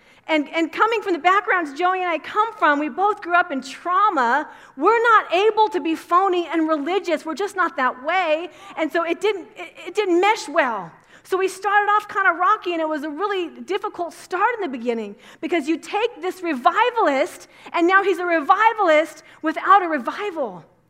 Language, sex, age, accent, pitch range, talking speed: English, female, 40-59, American, 290-370 Hz, 200 wpm